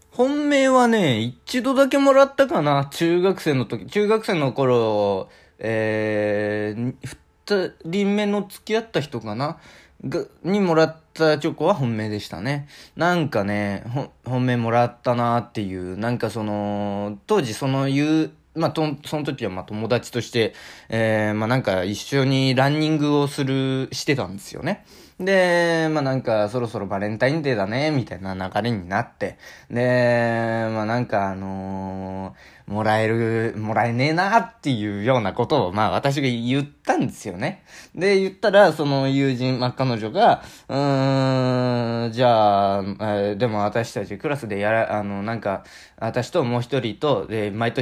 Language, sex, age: Japanese, male, 20-39